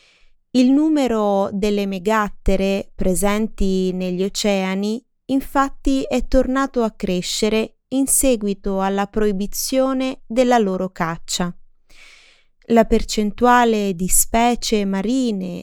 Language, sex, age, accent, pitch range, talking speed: Italian, female, 20-39, native, 195-245 Hz, 90 wpm